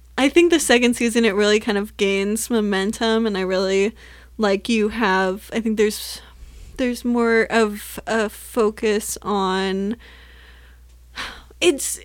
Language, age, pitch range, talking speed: English, 20-39, 200-235 Hz, 135 wpm